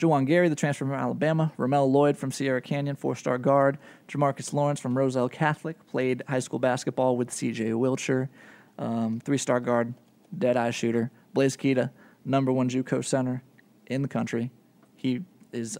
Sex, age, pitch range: male, 20-39, 120-155 Hz